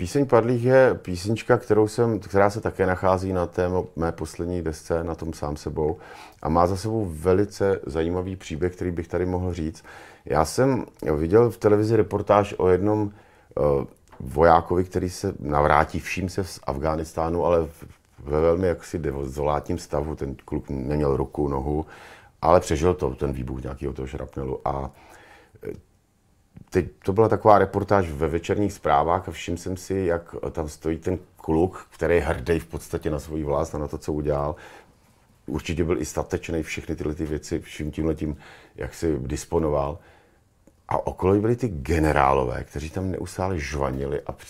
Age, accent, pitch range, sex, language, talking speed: 50-69, native, 80-100 Hz, male, Czech, 160 wpm